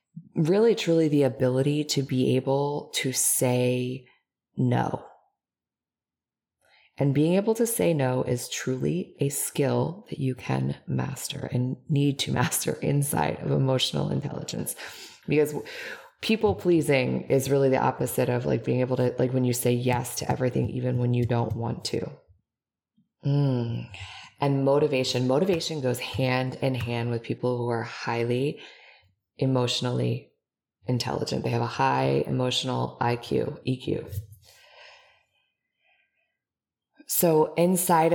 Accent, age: American, 20-39